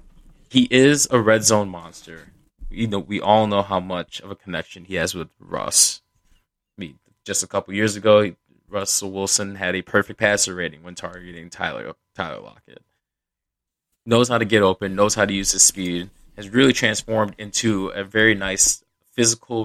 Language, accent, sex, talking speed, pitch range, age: English, American, male, 180 wpm, 90-110 Hz, 20-39